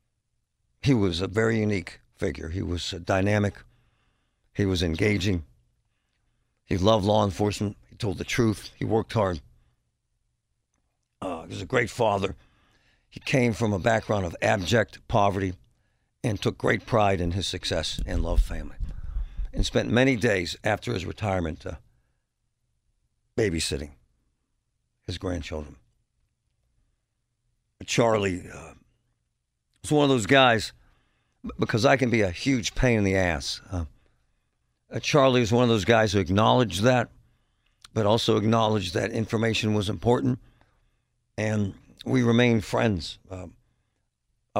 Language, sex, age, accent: English, male, 60-79, American